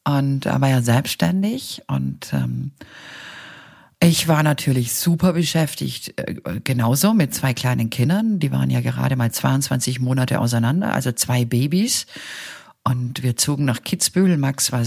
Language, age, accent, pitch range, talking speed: German, 50-69, German, 125-165 Hz, 140 wpm